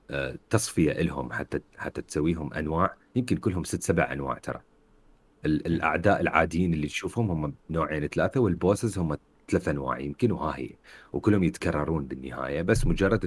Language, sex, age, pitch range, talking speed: Arabic, male, 30-49, 75-100 Hz, 140 wpm